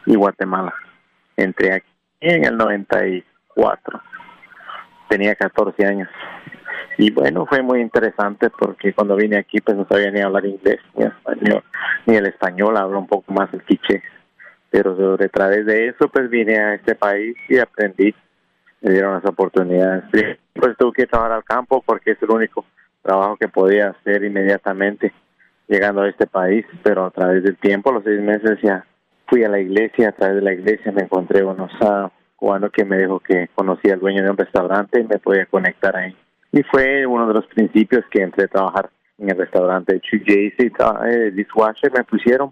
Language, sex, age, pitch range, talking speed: Spanish, male, 30-49, 95-110 Hz, 180 wpm